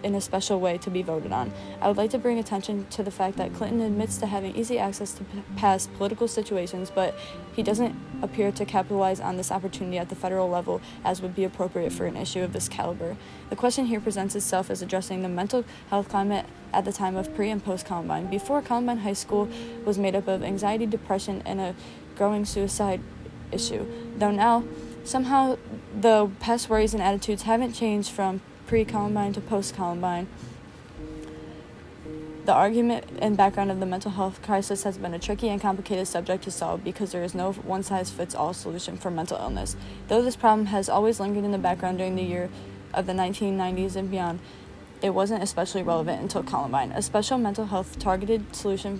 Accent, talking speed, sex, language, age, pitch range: American, 190 wpm, female, English, 20-39, 185-210 Hz